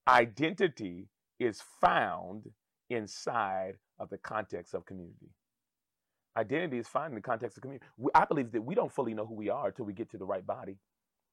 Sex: male